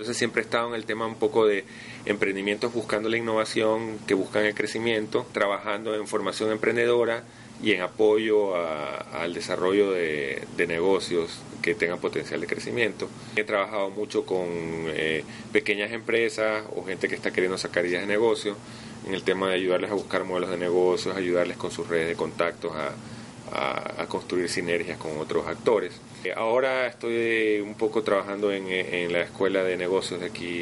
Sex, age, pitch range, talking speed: male, 30-49, 90-110 Hz, 170 wpm